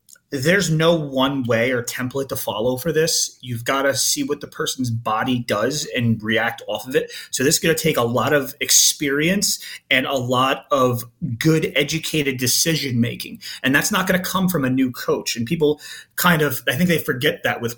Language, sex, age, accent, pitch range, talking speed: English, male, 30-49, American, 125-165 Hz, 210 wpm